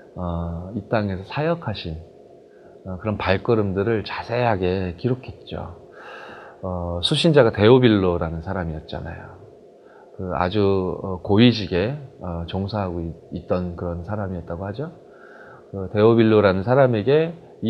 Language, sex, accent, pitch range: Korean, male, native, 95-140 Hz